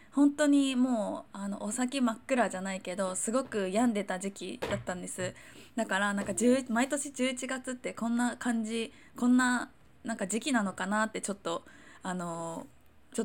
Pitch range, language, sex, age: 200-260 Hz, Japanese, female, 20-39